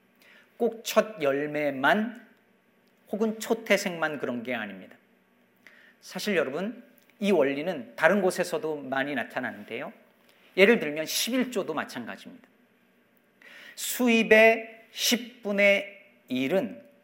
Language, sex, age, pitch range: Korean, male, 40-59, 180-230 Hz